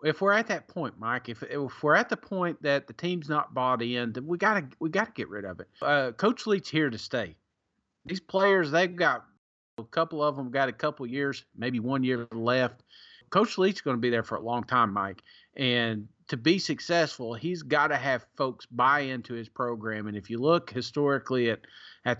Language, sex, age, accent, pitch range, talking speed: English, male, 40-59, American, 120-160 Hz, 220 wpm